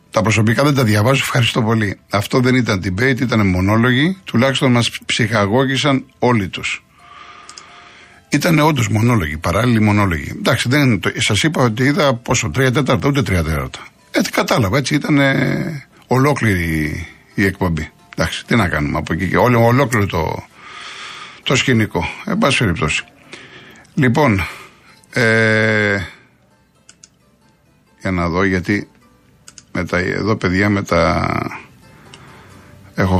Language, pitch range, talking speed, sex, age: Greek, 95-125 Hz, 115 wpm, male, 50-69